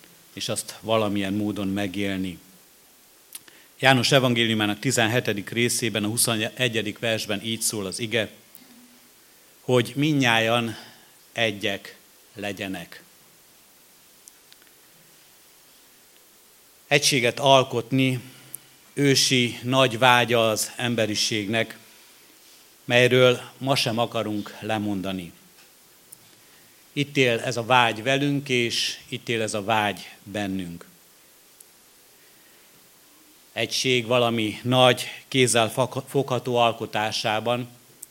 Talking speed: 80 wpm